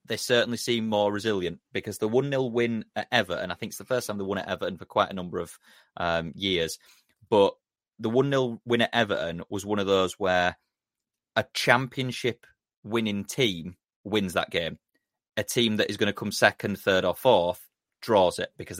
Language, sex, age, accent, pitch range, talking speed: English, male, 30-49, British, 90-110 Hz, 190 wpm